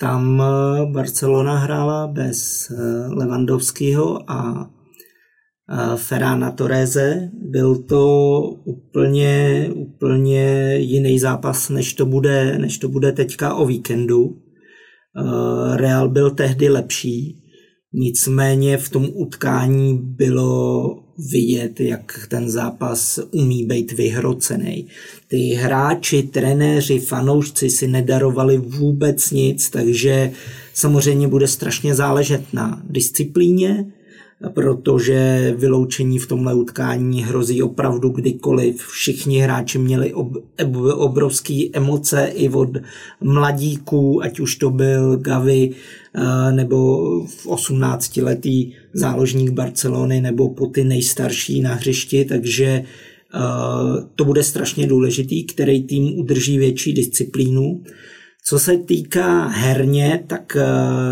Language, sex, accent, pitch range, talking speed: Czech, male, native, 125-140 Hz, 100 wpm